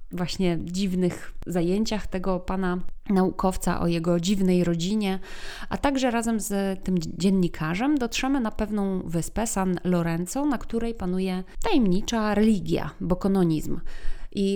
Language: Polish